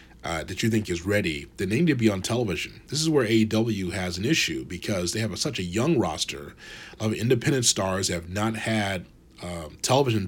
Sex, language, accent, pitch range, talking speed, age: male, English, American, 95-115 Hz, 210 wpm, 30-49